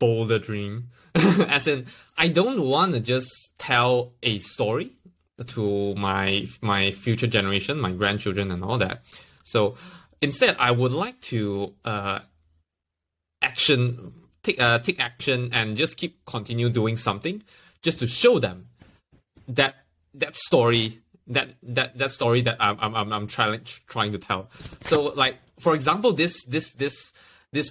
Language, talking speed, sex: English, 145 wpm, male